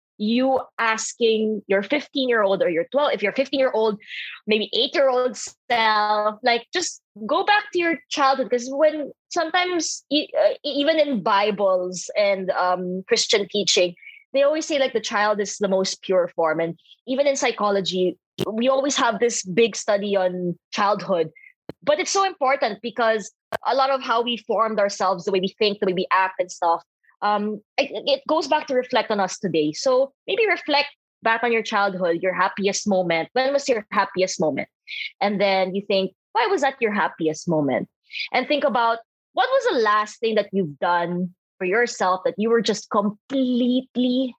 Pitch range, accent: 190-265 Hz, Filipino